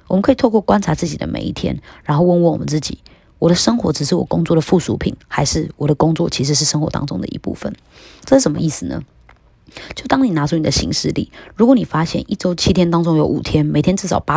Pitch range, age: 150-180 Hz, 20-39